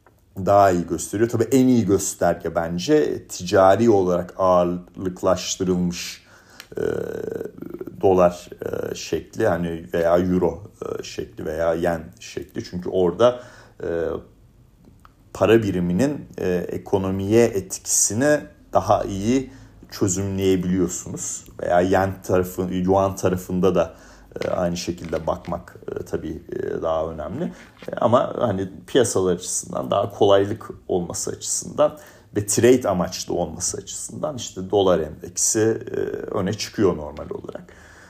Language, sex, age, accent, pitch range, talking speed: Turkish, male, 40-59, native, 90-125 Hz, 105 wpm